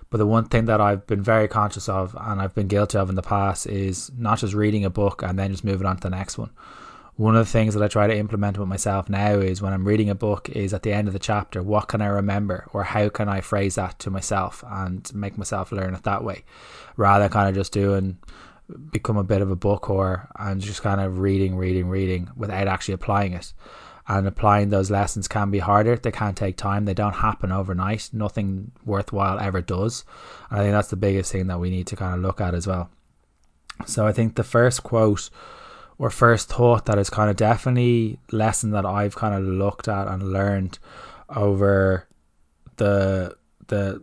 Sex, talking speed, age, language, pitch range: male, 220 wpm, 20-39, English, 95-105 Hz